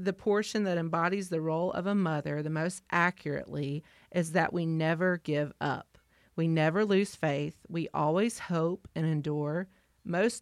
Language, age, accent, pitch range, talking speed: English, 30-49, American, 160-190 Hz, 160 wpm